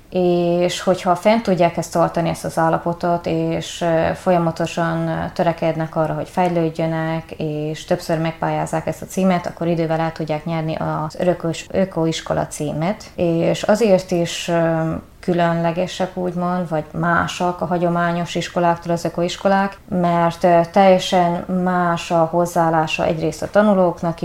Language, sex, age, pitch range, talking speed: Hungarian, female, 20-39, 165-180 Hz, 125 wpm